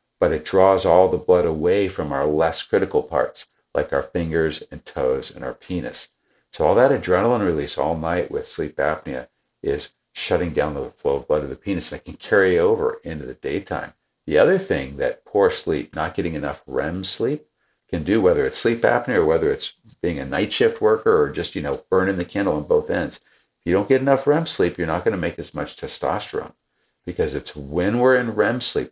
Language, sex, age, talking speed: English, male, 50-69, 215 wpm